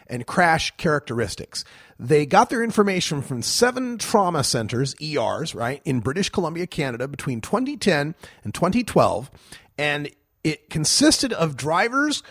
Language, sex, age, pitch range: English, male, 40-59, 140-200 Hz